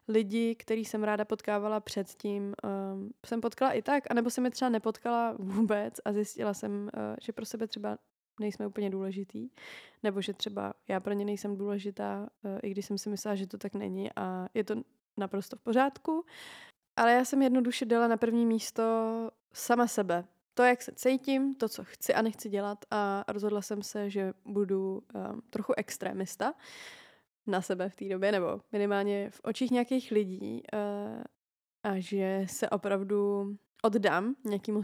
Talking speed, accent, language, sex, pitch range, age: 170 wpm, native, Czech, female, 200-225 Hz, 20-39